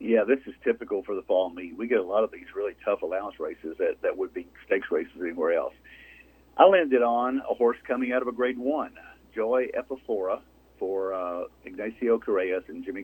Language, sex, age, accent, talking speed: English, male, 50-69, American, 205 wpm